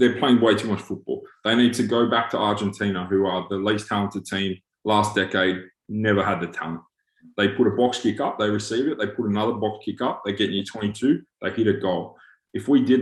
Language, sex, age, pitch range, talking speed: English, male, 20-39, 95-115 Hz, 235 wpm